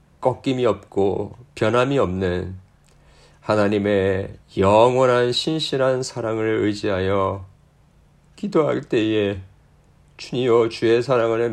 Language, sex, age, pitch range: Korean, male, 40-59, 95-115 Hz